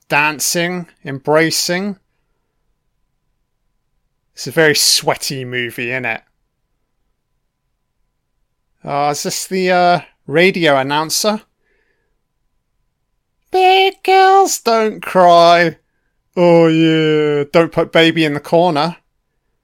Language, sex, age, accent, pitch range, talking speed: English, male, 30-49, British, 145-175 Hz, 85 wpm